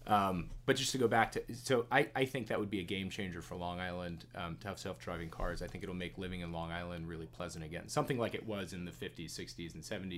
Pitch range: 90-120 Hz